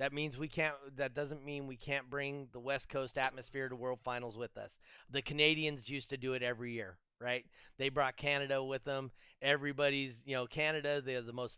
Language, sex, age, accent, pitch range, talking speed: English, male, 30-49, American, 115-140 Hz, 210 wpm